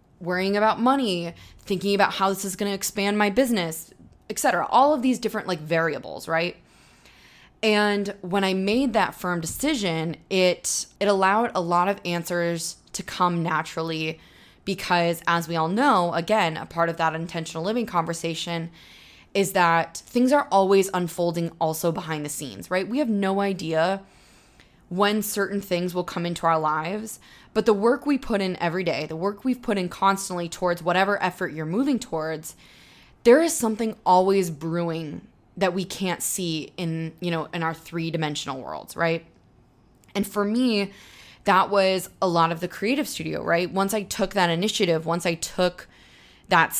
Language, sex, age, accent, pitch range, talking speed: English, female, 20-39, American, 165-200 Hz, 170 wpm